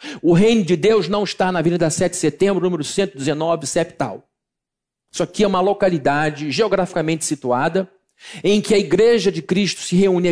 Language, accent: Portuguese, Brazilian